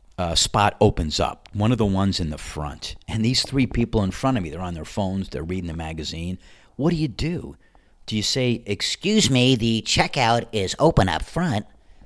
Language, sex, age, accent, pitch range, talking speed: English, male, 50-69, American, 80-115 Hz, 210 wpm